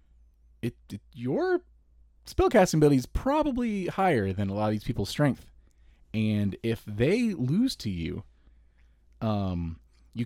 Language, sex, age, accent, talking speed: English, male, 30-49, American, 135 wpm